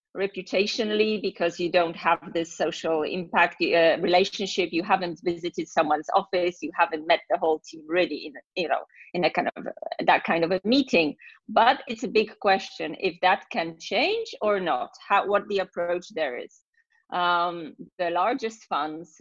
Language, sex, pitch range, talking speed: English, female, 170-205 Hz, 165 wpm